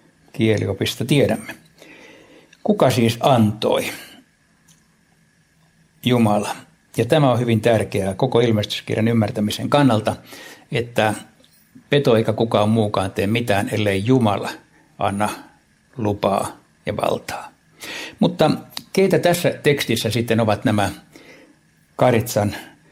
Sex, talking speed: male, 90 wpm